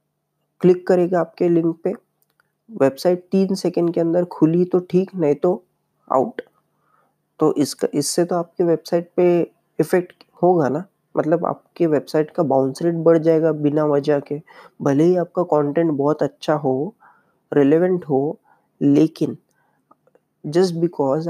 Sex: female